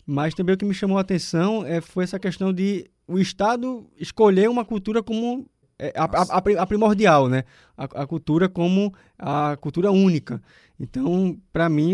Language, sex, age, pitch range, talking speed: Portuguese, male, 20-39, 140-185 Hz, 175 wpm